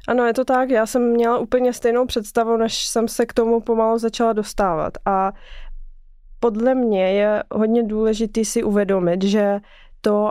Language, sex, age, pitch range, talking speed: Czech, female, 20-39, 215-235 Hz, 165 wpm